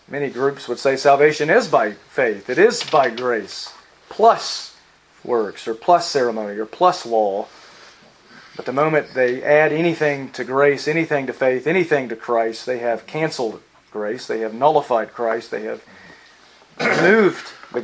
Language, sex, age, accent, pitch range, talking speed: English, male, 40-59, American, 120-160 Hz, 155 wpm